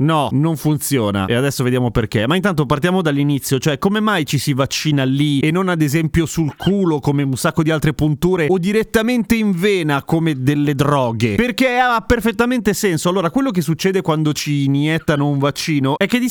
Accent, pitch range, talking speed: native, 145-205 Hz, 195 wpm